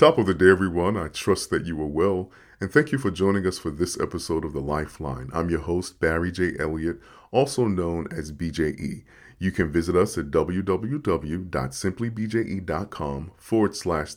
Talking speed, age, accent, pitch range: 175 wpm, 40-59, American, 80-100 Hz